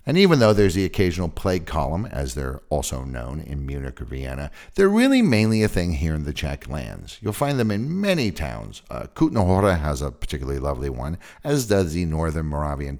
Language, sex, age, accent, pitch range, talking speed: English, male, 50-69, American, 75-110 Hz, 205 wpm